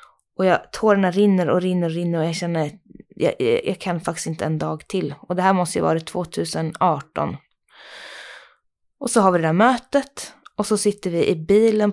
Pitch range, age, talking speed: 175-230 Hz, 20-39, 200 wpm